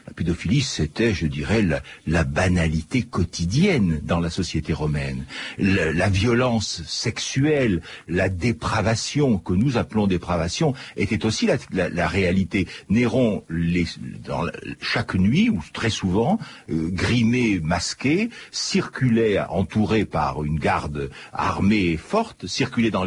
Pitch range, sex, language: 90-130 Hz, male, French